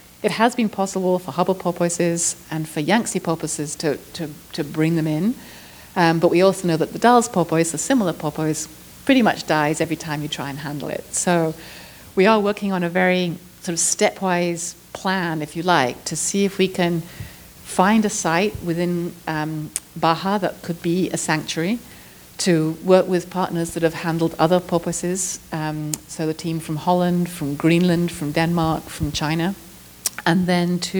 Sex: female